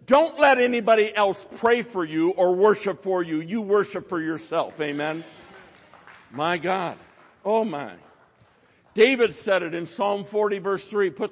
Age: 60-79